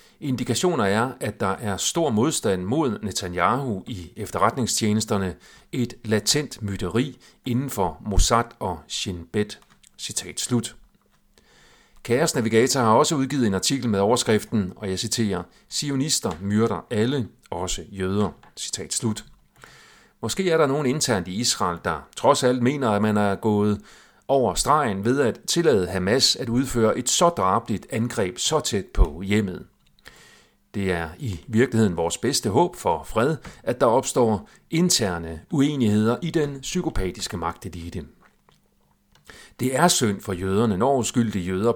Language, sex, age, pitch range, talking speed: Danish, male, 40-59, 95-125 Hz, 140 wpm